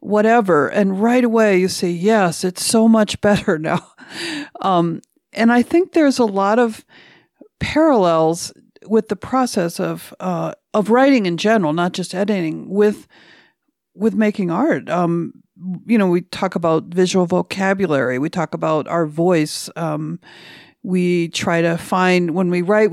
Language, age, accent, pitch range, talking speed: English, 50-69, American, 170-220 Hz, 150 wpm